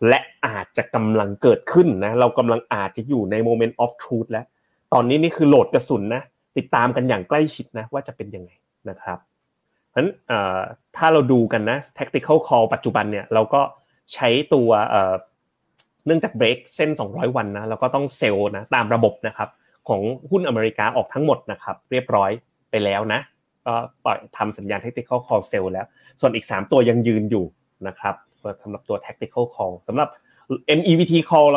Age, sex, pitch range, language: 20-39, male, 105-135 Hz, Thai